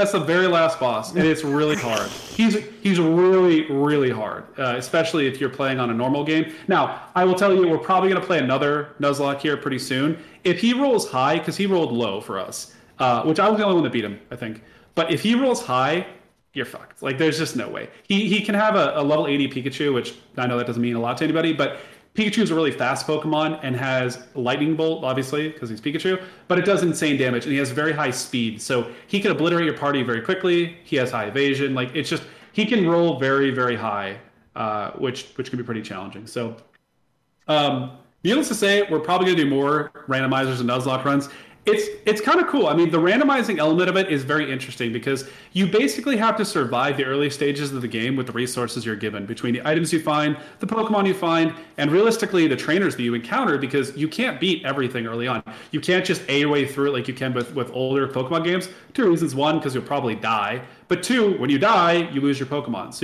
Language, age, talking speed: English, 30-49, 235 wpm